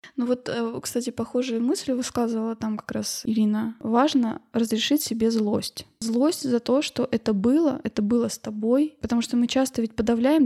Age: 20-39